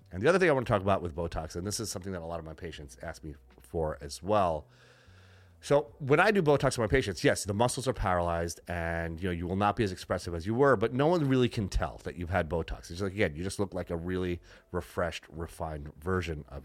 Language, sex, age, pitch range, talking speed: English, male, 30-49, 85-105 Hz, 265 wpm